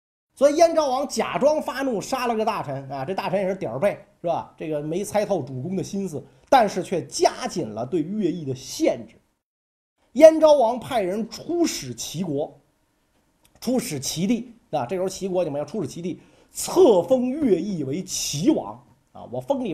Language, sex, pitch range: Chinese, male, 165-280 Hz